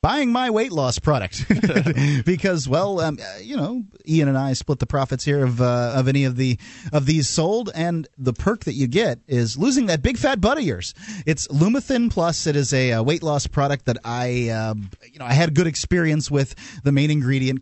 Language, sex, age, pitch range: English, male, 30-49, 115-150 Hz